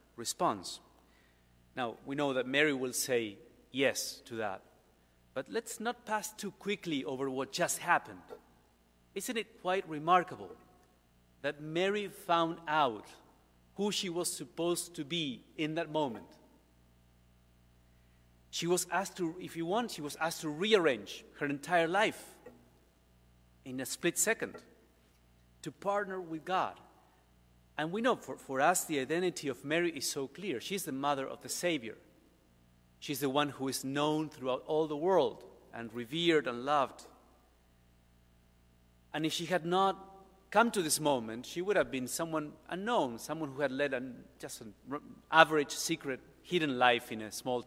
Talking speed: 155 wpm